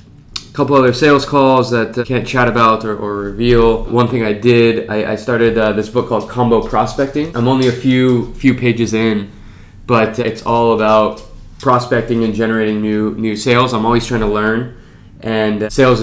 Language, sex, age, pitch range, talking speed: English, male, 20-39, 105-120 Hz, 185 wpm